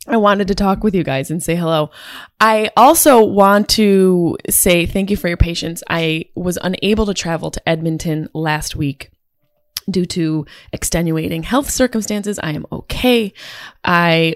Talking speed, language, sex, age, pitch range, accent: 160 wpm, English, female, 20-39, 160-205 Hz, American